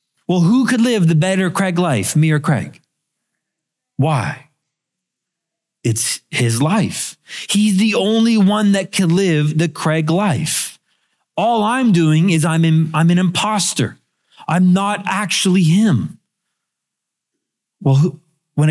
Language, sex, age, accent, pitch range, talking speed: English, male, 40-59, American, 145-185 Hz, 130 wpm